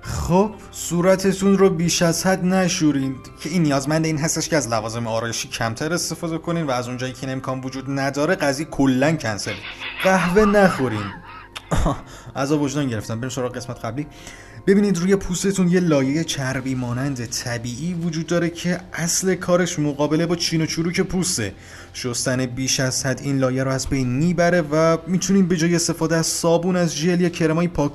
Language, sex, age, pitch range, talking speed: Persian, male, 30-49, 130-180 Hz, 170 wpm